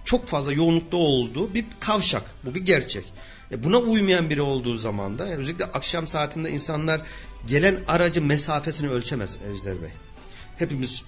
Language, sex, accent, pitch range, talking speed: Turkish, male, native, 125-175 Hz, 145 wpm